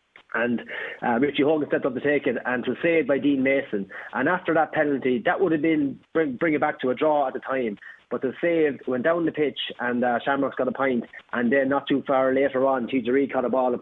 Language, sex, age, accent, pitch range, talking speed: English, male, 30-49, Irish, 135-165 Hz, 260 wpm